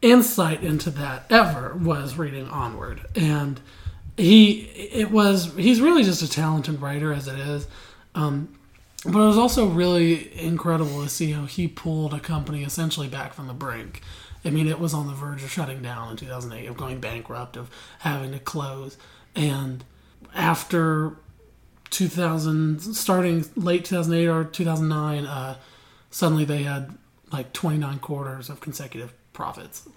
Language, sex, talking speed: English, male, 150 wpm